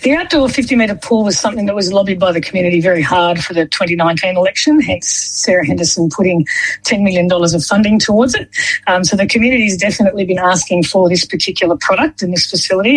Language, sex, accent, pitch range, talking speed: English, female, Australian, 170-205 Hz, 195 wpm